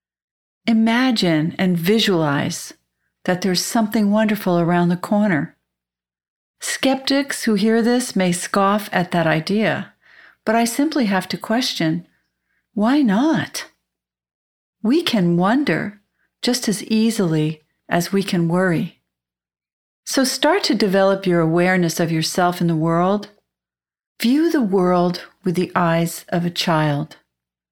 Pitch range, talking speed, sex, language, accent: 155-215 Hz, 125 wpm, female, English, American